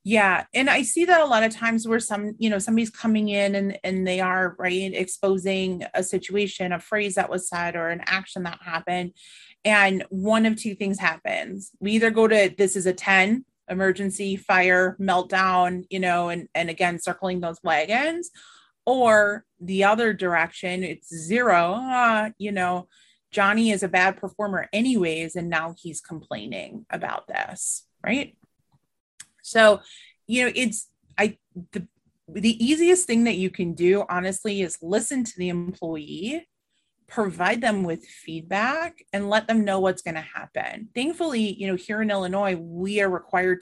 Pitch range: 175-215 Hz